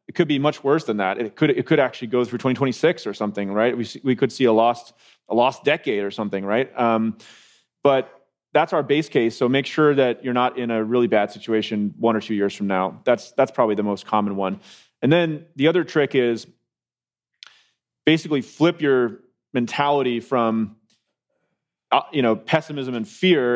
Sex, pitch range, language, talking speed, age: male, 110-140 Hz, English, 195 wpm, 30-49